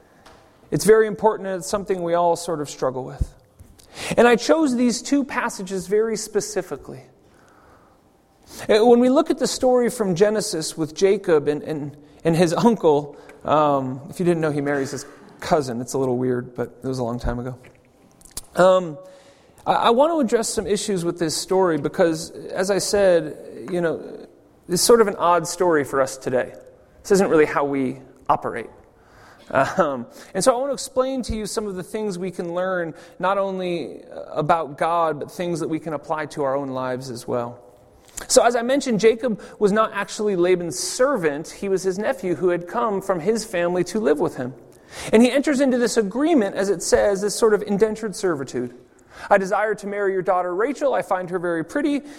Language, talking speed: English, 195 wpm